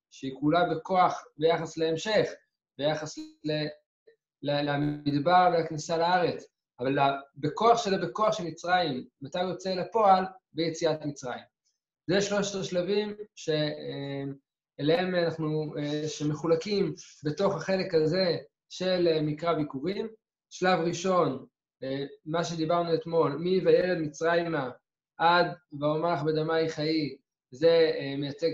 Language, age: Hebrew, 20-39